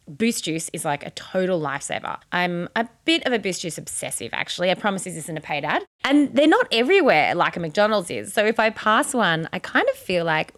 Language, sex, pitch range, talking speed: English, female, 170-255 Hz, 235 wpm